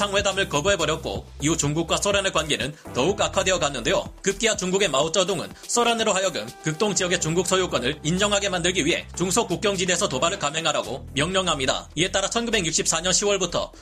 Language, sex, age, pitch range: Korean, male, 30-49, 165-205 Hz